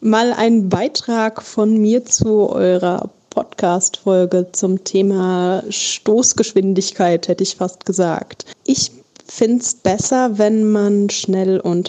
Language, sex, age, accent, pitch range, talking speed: German, female, 20-39, German, 195-225 Hz, 115 wpm